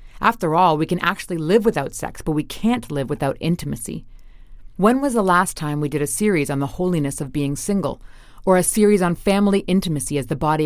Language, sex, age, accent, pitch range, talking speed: English, female, 30-49, American, 145-180 Hz, 215 wpm